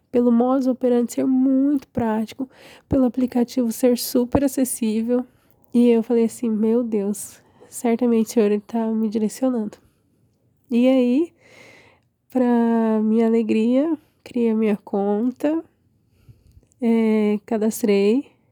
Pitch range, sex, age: 220-250 Hz, female, 20-39